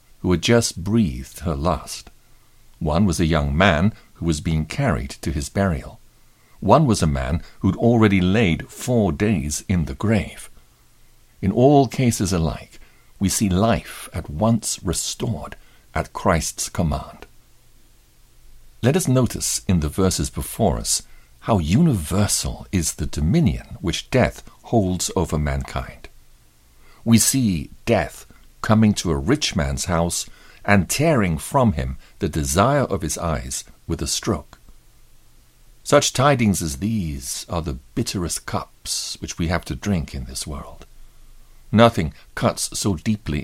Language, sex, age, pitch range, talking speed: English, male, 60-79, 75-110 Hz, 140 wpm